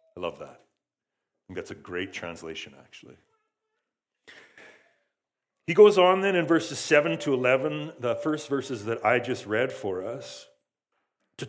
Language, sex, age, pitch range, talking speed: English, male, 40-59, 115-150 Hz, 150 wpm